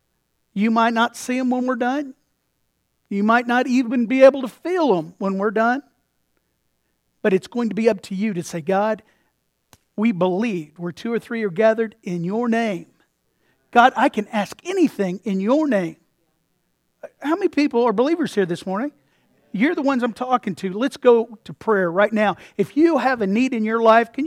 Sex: male